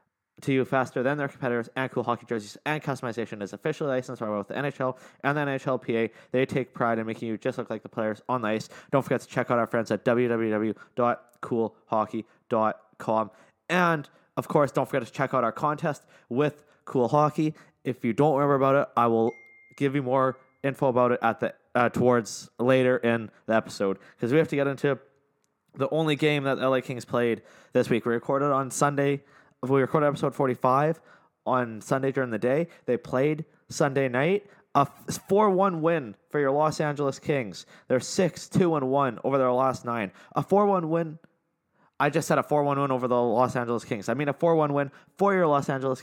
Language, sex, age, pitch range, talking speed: English, male, 20-39, 120-150 Hz, 195 wpm